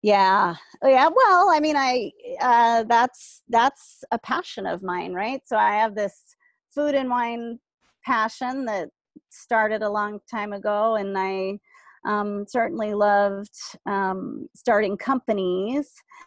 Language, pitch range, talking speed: English, 190-235 Hz, 135 wpm